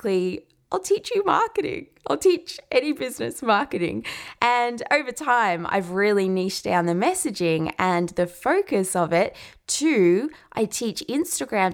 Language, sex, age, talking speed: English, female, 20-39, 140 wpm